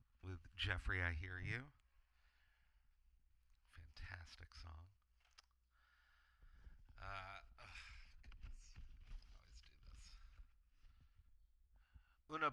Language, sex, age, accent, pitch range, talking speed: English, male, 40-59, American, 70-100 Hz, 60 wpm